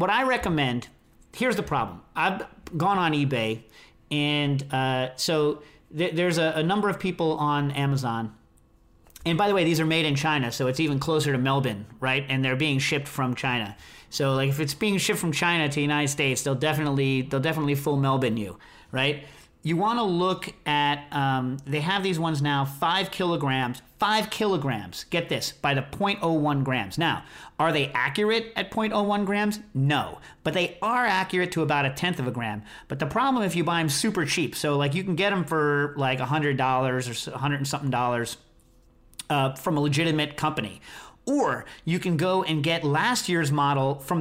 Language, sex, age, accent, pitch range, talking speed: English, male, 40-59, American, 135-175 Hz, 195 wpm